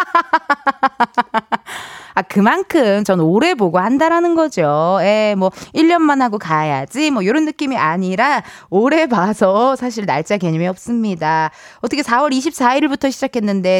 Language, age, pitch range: Korean, 20-39, 190-295 Hz